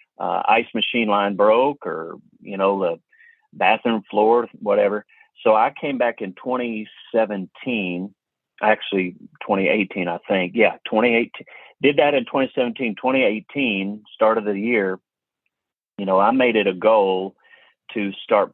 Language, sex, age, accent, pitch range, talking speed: English, male, 40-59, American, 95-115 Hz, 135 wpm